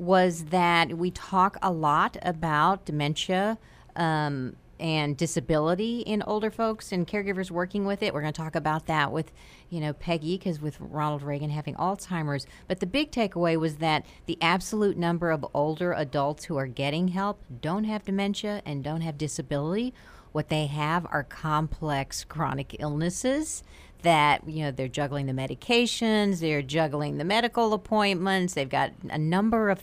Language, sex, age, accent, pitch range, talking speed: English, female, 50-69, American, 150-200 Hz, 165 wpm